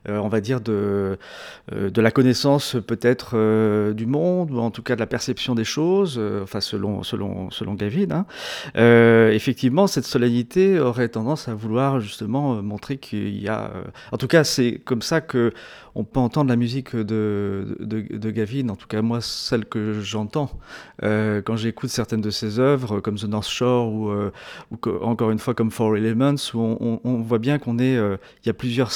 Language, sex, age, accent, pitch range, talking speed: French, male, 40-59, French, 110-130 Hz, 210 wpm